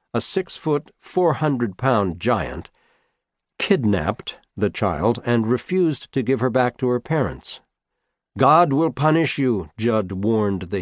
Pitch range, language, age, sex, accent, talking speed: 110-145 Hz, English, 60-79, male, American, 145 wpm